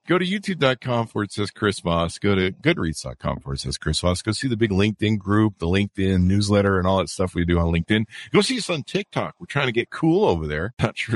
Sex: male